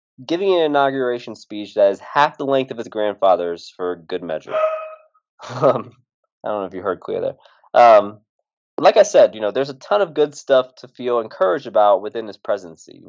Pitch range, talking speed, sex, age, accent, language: 100-145 Hz, 195 wpm, male, 20-39, American, English